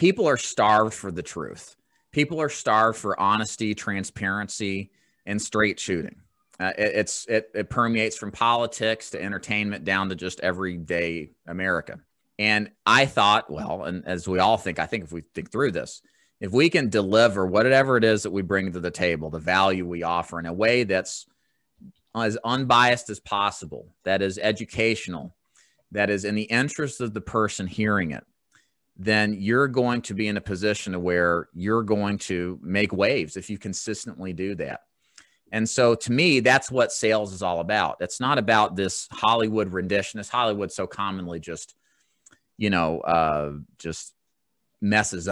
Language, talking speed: English, 170 wpm